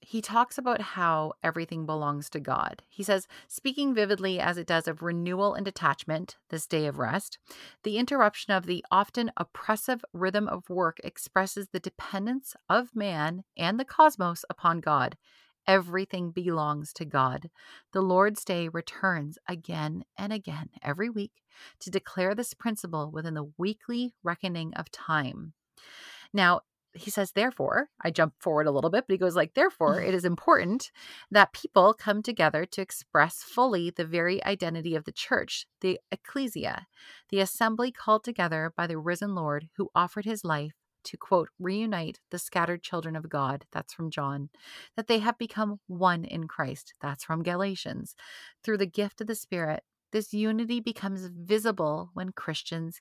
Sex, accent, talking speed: female, American, 160 wpm